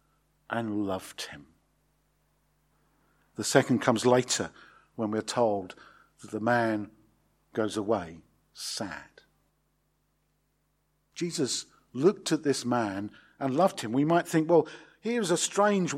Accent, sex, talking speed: British, male, 115 wpm